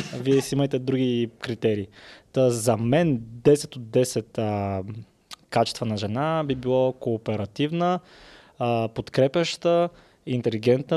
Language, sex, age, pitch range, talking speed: Bulgarian, male, 20-39, 120-145 Hz, 110 wpm